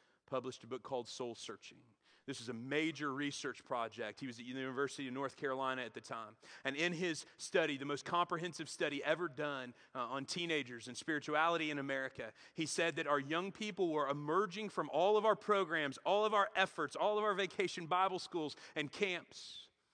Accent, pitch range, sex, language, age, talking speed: American, 135-160 Hz, male, English, 40-59, 195 wpm